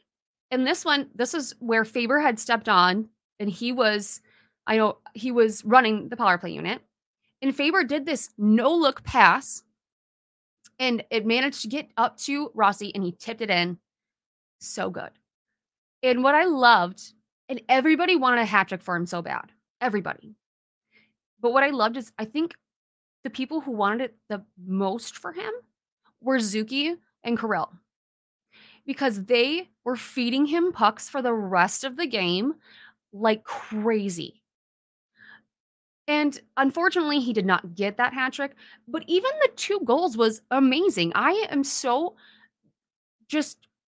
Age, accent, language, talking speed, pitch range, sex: 20-39, American, English, 155 wpm, 215-290 Hz, female